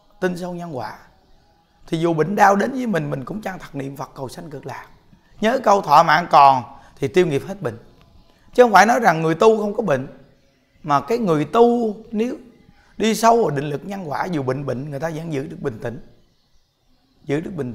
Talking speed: 225 wpm